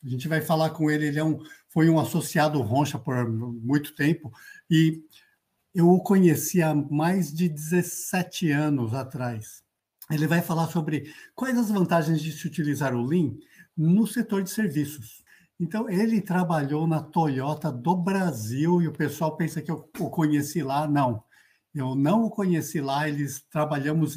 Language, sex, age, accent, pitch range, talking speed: Portuguese, male, 60-79, Brazilian, 145-175 Hz, 160 wpm